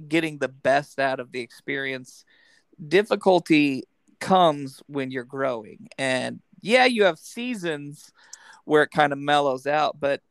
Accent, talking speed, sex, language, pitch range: American, 140 wpm, male, English, 140-210 Hz